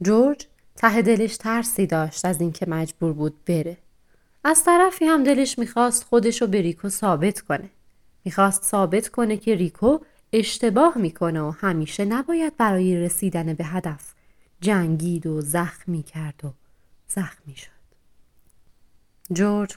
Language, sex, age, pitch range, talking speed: Persian, female, 30-49, 170-225 Hz, 130 wpm